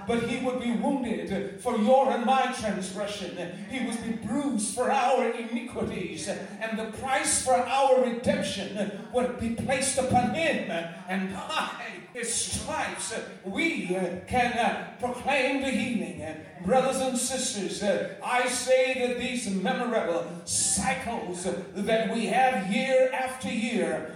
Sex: male